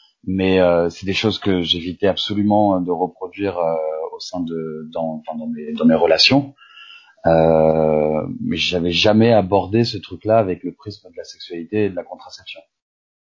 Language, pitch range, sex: French, 80-105 Hz, male